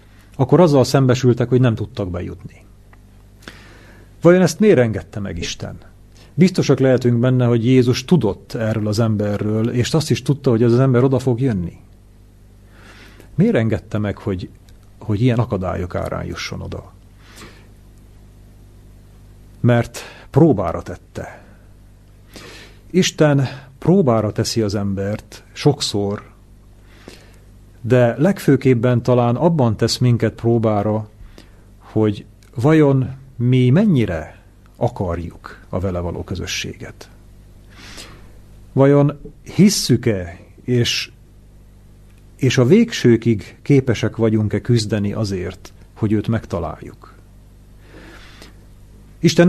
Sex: male